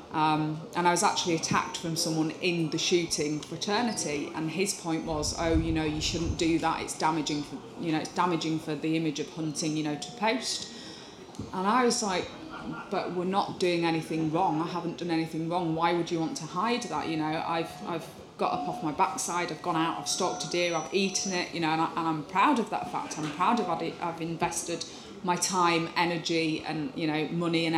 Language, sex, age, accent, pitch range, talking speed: English, female, 20-39, British, 160-180 Hz, 215 wpm